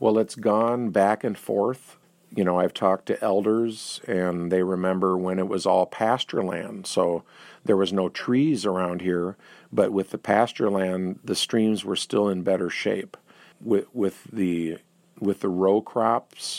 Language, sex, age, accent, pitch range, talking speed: English, male, 50-69, American, 90-100 Hz, 170 wpm